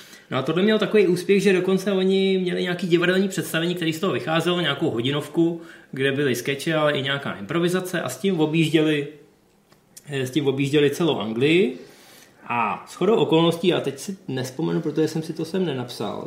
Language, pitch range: Czech, 135-170 Hz